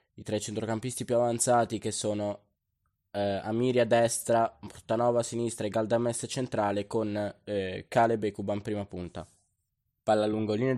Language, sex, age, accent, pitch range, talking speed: Italian, male, 20-39, native, 115-170 Hz, 145 wpm